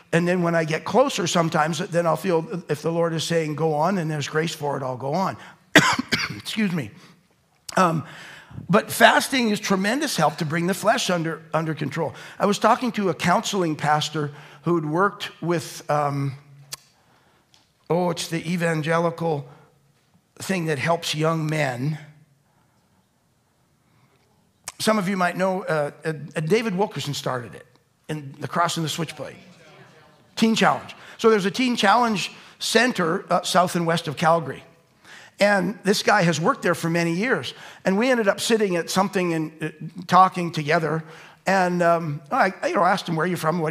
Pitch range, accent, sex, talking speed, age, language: 155-185 Hz, American, male, 170 wpm, 50-69, English